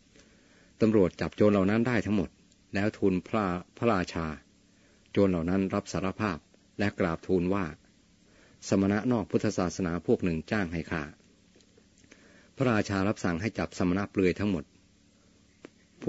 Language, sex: Thai, male